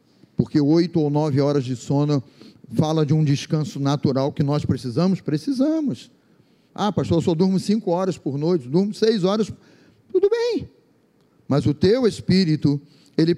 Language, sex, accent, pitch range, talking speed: Portuguese, male, Brazilian, 165-255 Hz, 155 wpm